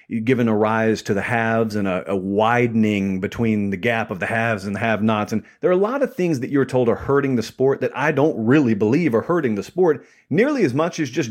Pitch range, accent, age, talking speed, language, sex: 110-150 Hz, American, 40-59, 250 wpm, English, male